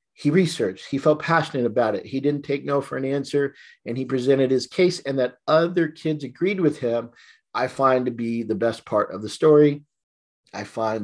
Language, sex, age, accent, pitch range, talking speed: English, male, 40-59, American, 110-140 Hz, 205 wpm